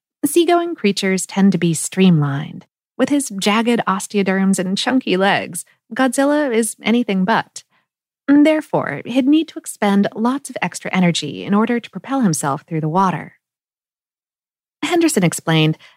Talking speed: 135 wpm